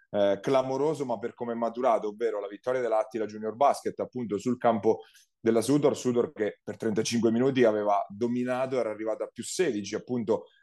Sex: male